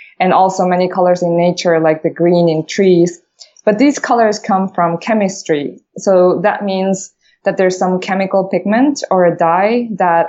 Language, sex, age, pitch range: English, female, 20-39, 175-205 Hz